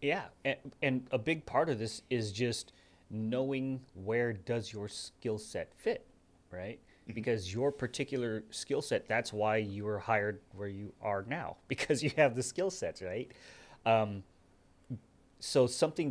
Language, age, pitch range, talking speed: English, 30-49, 95-120 Hz, 155 wpm